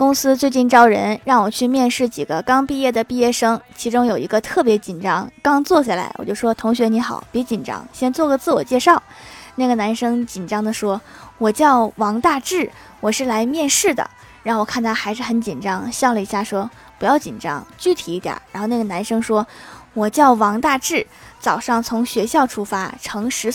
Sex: female